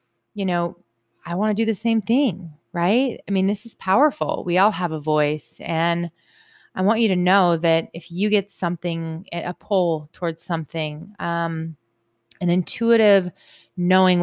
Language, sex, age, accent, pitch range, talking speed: English, female, 30-49, American, 155-200 Hz, 165 wpm